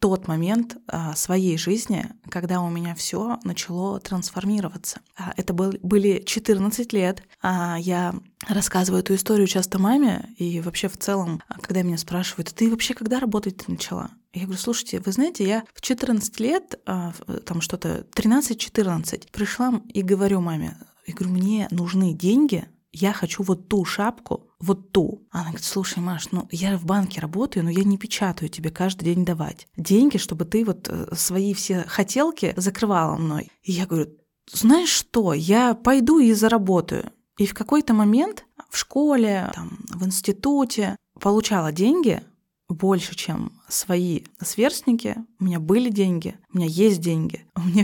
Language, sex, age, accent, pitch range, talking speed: Russian, female, 20-39, native, 180-220 Hz, 150 wpm